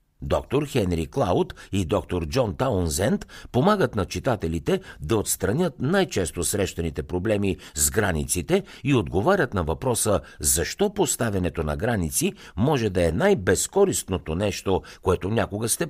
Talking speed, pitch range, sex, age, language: 125 wpm, 85-125 Hz, male, 60-79, Bulgarian